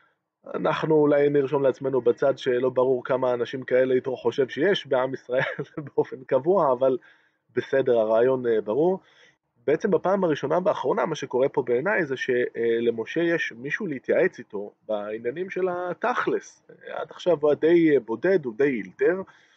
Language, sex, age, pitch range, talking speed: Hebrew, male, 20-39, 120-170 Hz, 140 wpm